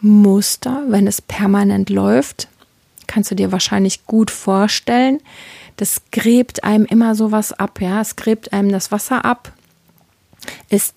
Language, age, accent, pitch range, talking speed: German, 30-49, German, 205-235 Hz, 135 wpm